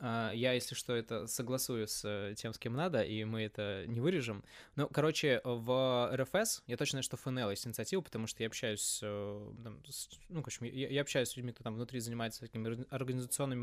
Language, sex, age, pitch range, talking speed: Russian, male, 20-39, 110-135 Hz, 185 wpm